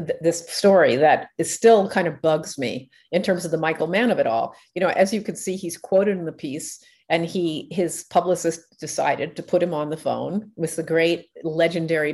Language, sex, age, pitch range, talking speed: English, female, 50-69, 165-220 Hz, 215 wpm